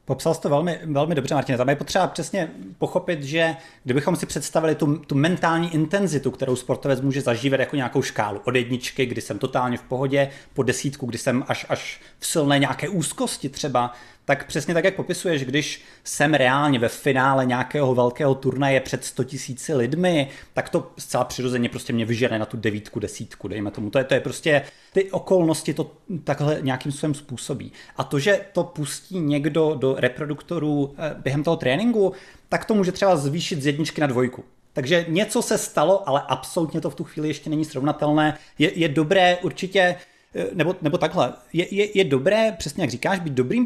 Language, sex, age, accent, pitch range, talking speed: Czech, male, 30-49, native, 135-190 Hz, 185 wpm